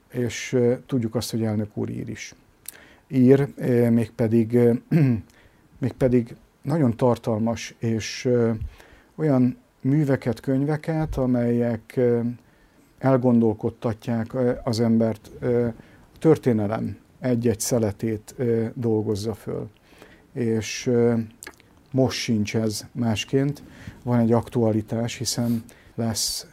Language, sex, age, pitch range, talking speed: Hungarian, male, 50-69, 115-130 Hz, 80 wpm